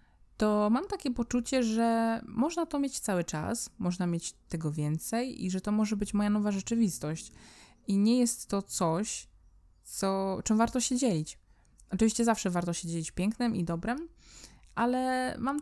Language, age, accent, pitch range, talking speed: Polish, 20-39, native, 175-245 Hz, 160 wpm